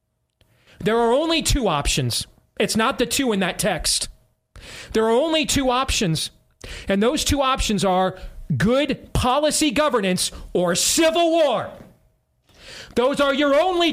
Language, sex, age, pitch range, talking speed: English, male, 40-59, 200-300 Hz, 140 wpm